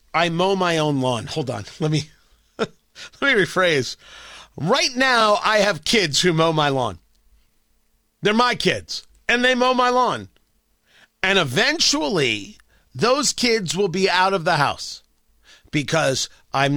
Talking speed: 145 wpm